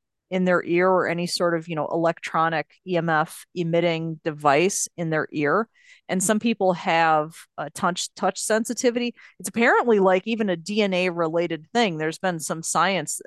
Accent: American